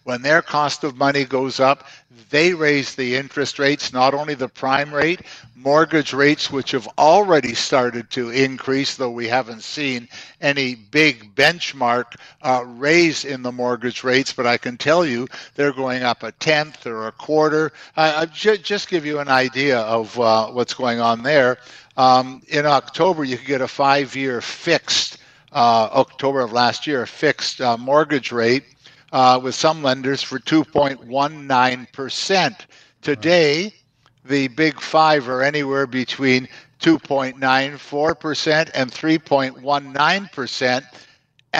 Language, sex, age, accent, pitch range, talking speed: English, male, 60-79, American, 125-150 Hz, 145 wpm